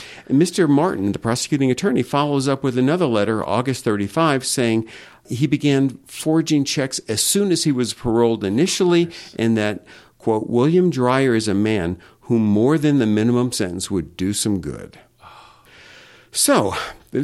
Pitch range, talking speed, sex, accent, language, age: 110-150 Hz, 155 wpm, male, American, English, 50-69